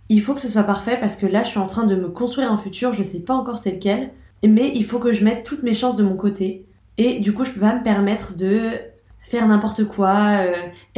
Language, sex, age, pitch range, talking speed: French, female, 20-39, 200-230 Hz, 270 wpm